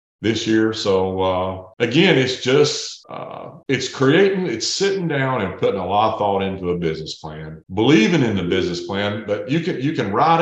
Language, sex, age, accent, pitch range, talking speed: English, male, 40-59, American, 95-130 Hz, 195 wpm